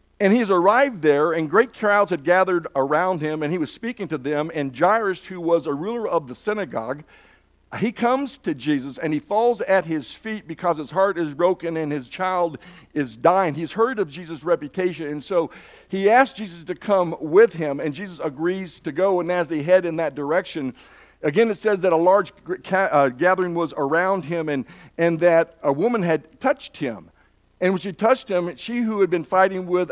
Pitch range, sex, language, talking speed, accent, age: 160-205 Hz, male, English, 205 wpm, American, 60-79